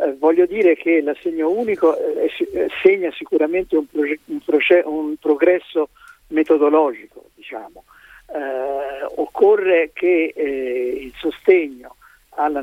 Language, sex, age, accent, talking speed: Italian, male, 50-69, native, 120 wpm